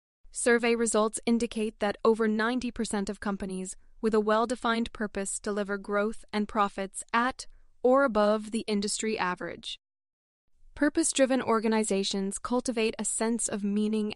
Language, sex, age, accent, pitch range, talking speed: English, female, 20-39, American, 195-230 Hz, 125 wpm